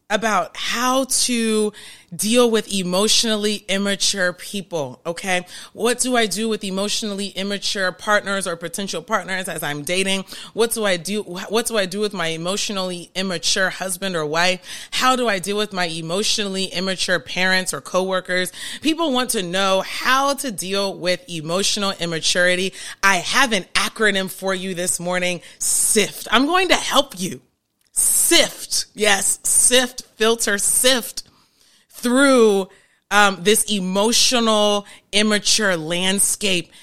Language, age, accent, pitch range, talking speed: English, 30-49, American, 180-215 Hz, 135 wpm